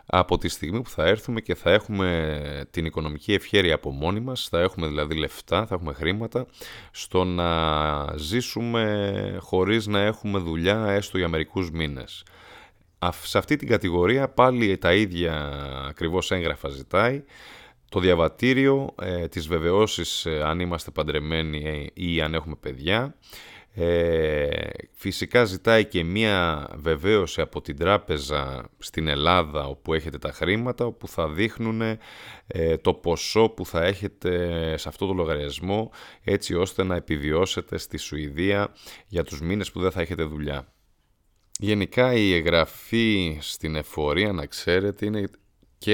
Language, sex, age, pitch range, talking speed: Greek, male, 30-49, 80-105 Hz, 135 wpm